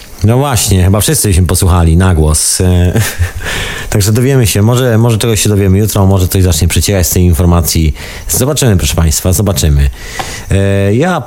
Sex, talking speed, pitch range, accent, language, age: male, 155 wpm, 80-100 Hz, native, Polish, 40-59